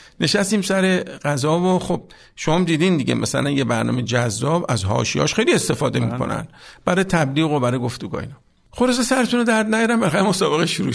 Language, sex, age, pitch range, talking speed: Persian, male, 50-69, 130-195 Hz, 170 wpm